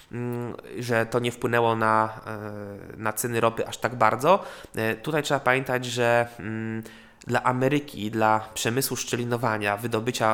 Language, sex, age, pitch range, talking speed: Polish, male, 20-39, 115-130 Hz, 130 wpm